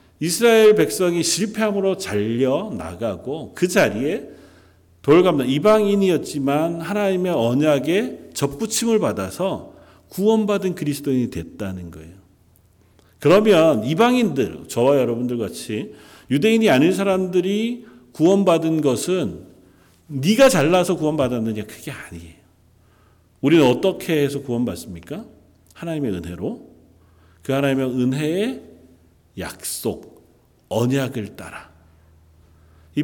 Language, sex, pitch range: Korean, male, 105-175 Hz